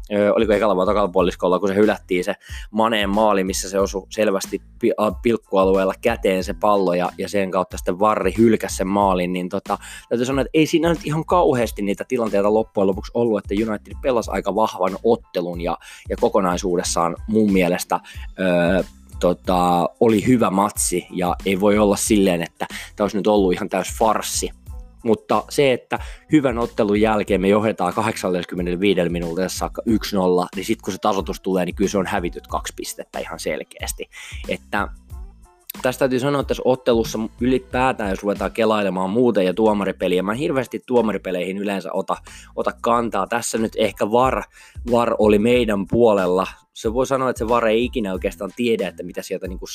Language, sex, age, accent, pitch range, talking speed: Finnish, male, 20-39, native, 90-110 Hz, 170 wpm